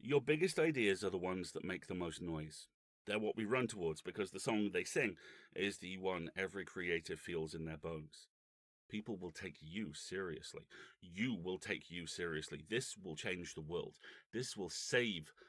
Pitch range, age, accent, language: 90-130 Hz, 40-59, British, English